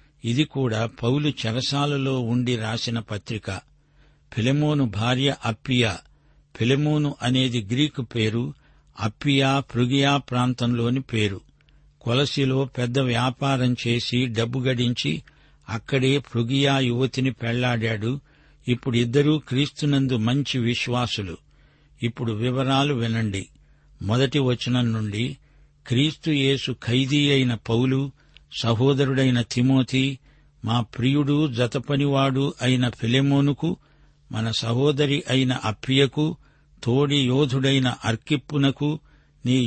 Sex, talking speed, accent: male, 85 wpm, native